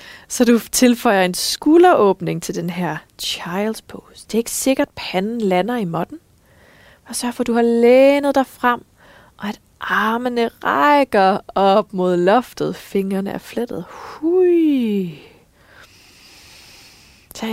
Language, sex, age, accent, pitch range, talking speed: Danish, female, 20-39, native, 180-245 Hz, 135 wpm